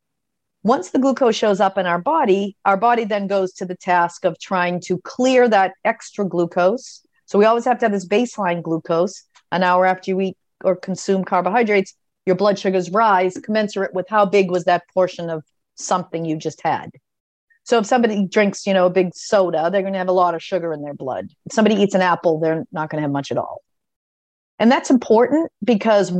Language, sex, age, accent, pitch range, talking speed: English, female, 40-59, American, 175-215 Hz, 210 wpm